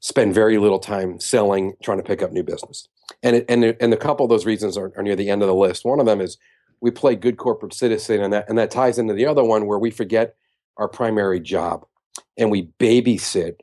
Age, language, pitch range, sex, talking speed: 40-59, English, 105-140 Hz, male, 245 wpm